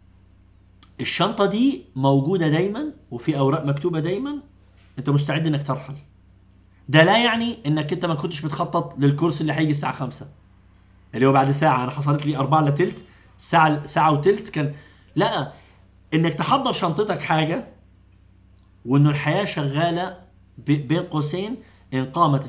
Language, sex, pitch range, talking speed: Arabic, male, 130-170 Hz, 135 wpm